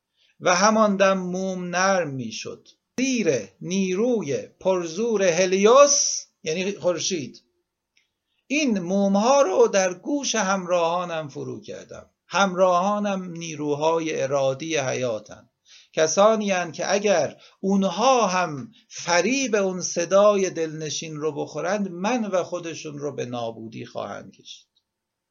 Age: 60-79